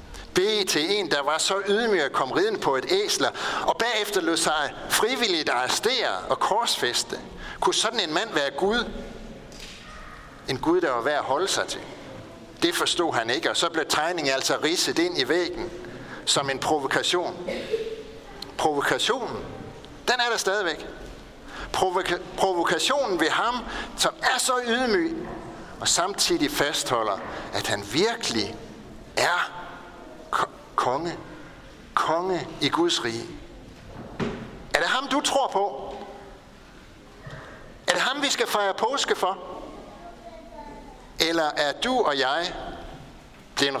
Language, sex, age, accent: Danish, male, 60-79, native